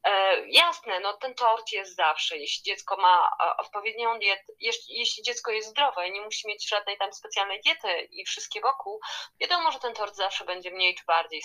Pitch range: 185-260 Hz